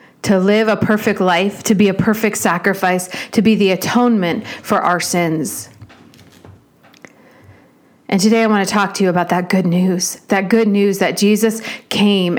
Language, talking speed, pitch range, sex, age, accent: English, 170 wpm, 190-230 Hz, female, 40-59, American